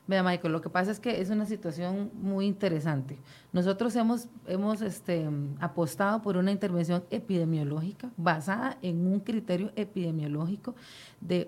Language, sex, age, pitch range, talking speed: Spanish, female, 40-59, 165-210 Hz, 135 wpm